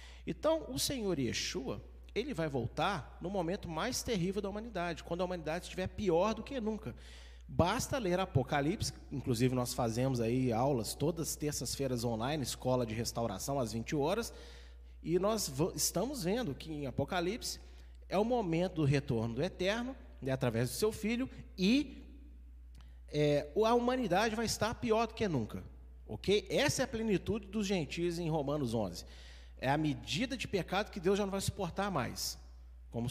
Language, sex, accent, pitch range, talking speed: Portuguese, male, Brazilian, 110-190 Hz, 165 wpm